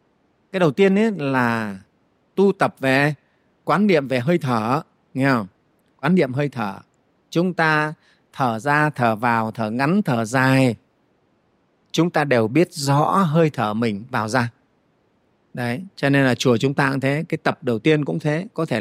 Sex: male